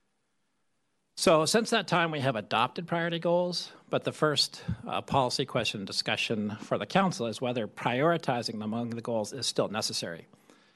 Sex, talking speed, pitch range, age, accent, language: male, 160 wpm, 120-150 Hz, 40-59, American, English